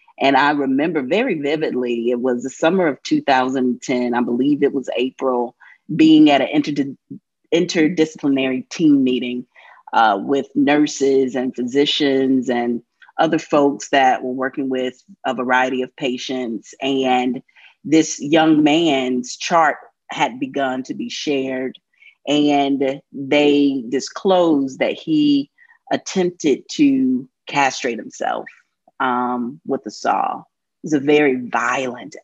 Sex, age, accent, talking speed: female, 30-49, American, 125 wpm